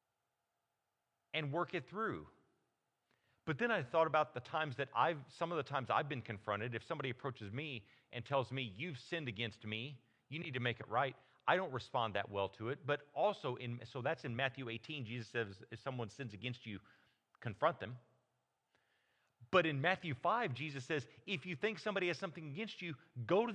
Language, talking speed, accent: English, 195 wpm, American